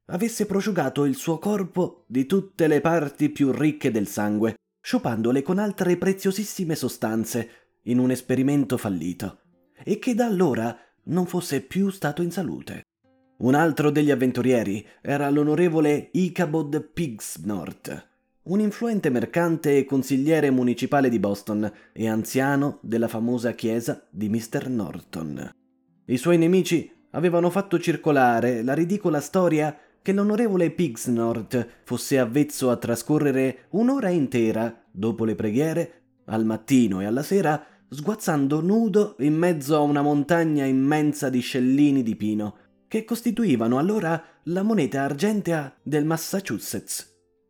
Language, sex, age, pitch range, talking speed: Italian, male, 30-49, 120-175 Hz, 130 wpm